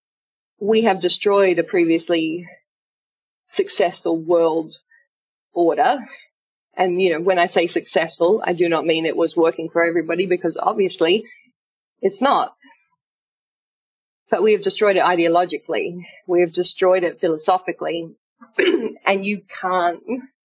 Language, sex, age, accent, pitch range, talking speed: English, female, 20-39, Australian, 170-255 Hz, 125 wpm